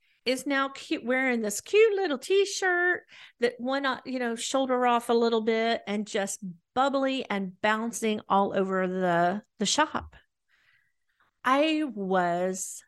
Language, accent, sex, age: English, American, female, 40-59